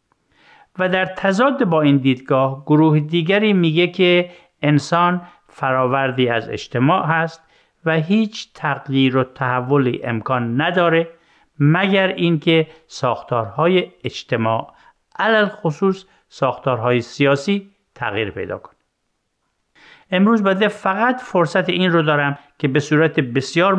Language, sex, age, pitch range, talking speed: Persian, male, 50-69, 125-175 Hz, 110 wpm